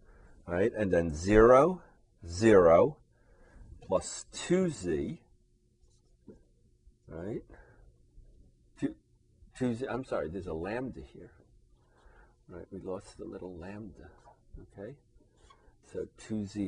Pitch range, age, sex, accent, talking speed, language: 85-115 Hz, 50-69, male, American, 100 wpm, English